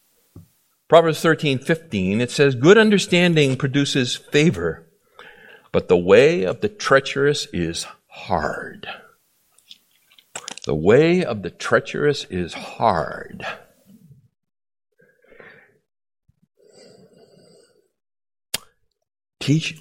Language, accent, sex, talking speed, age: English, American, male, 75 wpm, 60-79